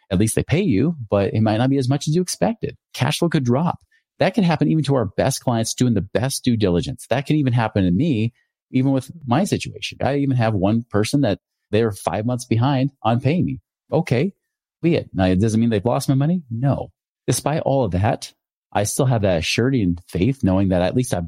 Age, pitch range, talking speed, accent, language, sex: 30-49, 100-130 Hz, 235 wpm, American, English, male